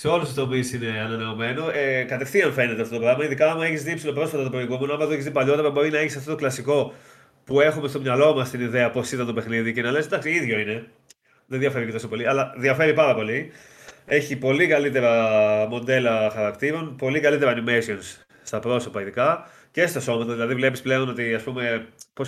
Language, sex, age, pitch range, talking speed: Greek, male, 30-49, 115-145 Hz, 200 wpm